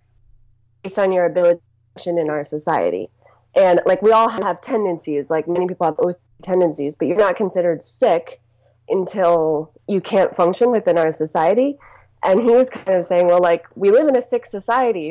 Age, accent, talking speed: 20-39, American, 185 wpm